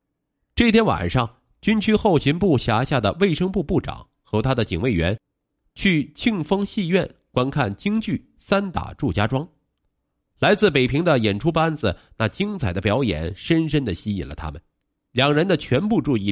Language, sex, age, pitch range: Chinese, male, 50-69, 105-175 Hz